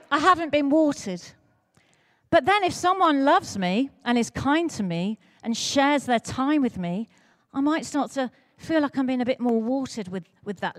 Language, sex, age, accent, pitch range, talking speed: English, female, 40-59, British, 200-300 Hz, 200 wpm